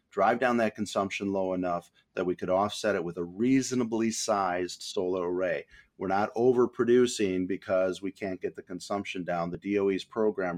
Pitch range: 90-105 Hz